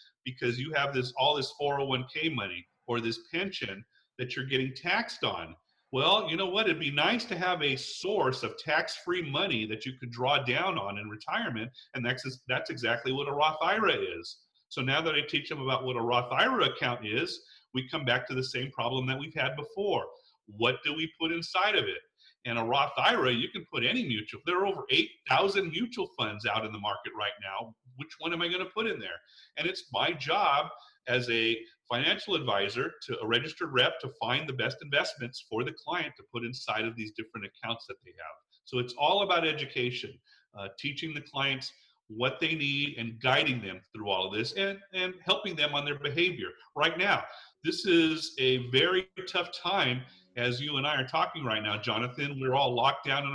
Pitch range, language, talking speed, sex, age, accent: 120-160 Hz, English, 210 wpm, male, 40-59, American